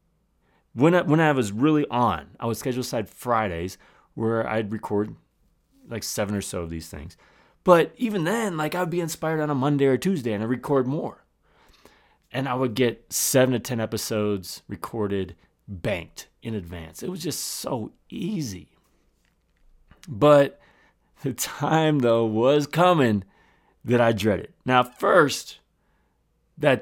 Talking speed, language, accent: 150 wpm, English, American